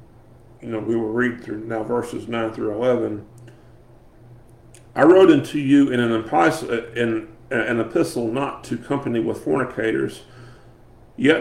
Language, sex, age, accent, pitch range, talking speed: English, male, 40-59, American, 115-130 Hz, 115 wpm